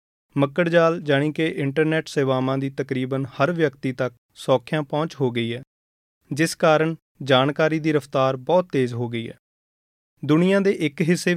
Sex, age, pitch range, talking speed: male, 30-49, 130-160 Hz, 155 wpm